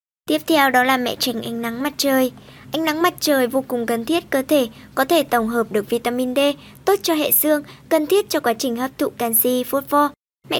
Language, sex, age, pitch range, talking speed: Vietnamese, male, 10-29, 240-295 Hz, 230 wpm